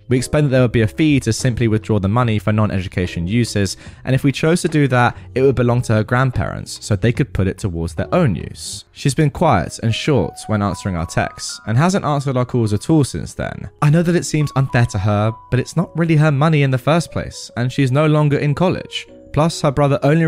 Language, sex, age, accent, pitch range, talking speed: English, male, 20-39, British, 100-140 Hz, 250 wpm